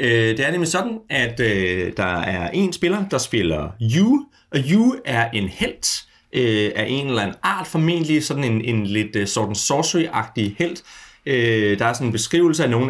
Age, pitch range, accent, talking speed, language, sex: 30-49, 110-165 Hz, native, 185 wpm, Danish, male